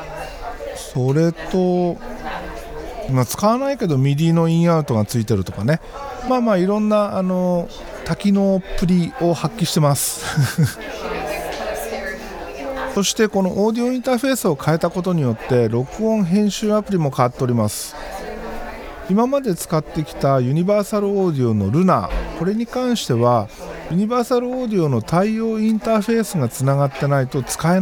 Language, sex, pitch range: Japanese, male, 135-210 Hz